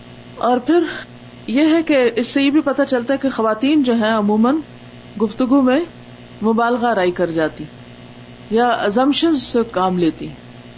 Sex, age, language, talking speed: female, 40-59, Urdu, 150 wpm